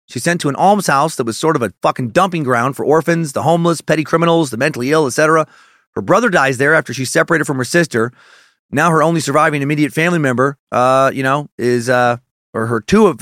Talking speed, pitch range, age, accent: 220 wpm, 125-160 Hz, 30-49, American